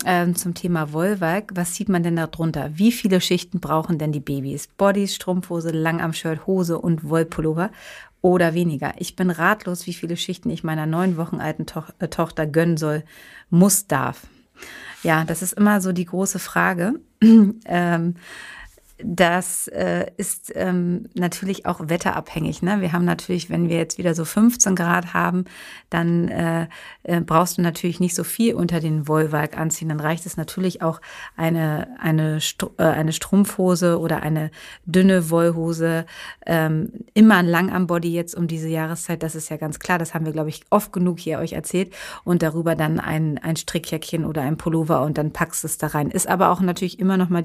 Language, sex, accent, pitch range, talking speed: German, female, German, 160-185 Hz, 185 wpm